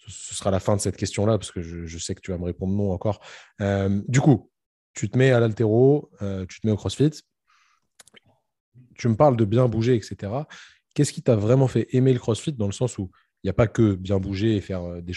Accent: French